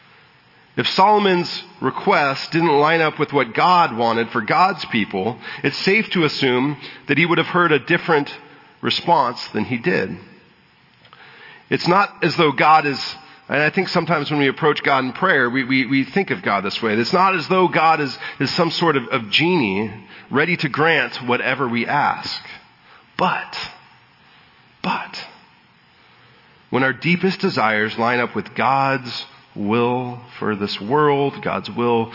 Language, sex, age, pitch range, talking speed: English, male, 40-59, 120-165 Hz, 160 wpm